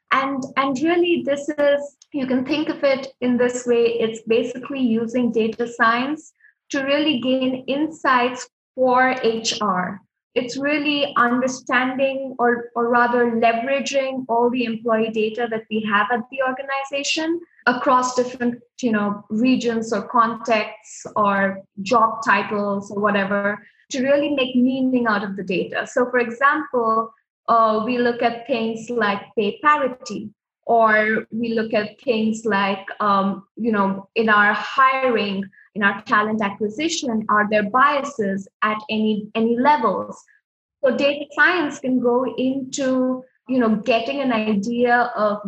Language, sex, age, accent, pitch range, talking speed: English, female, 20-39, Indian, 215-260 Hz, 140 wpm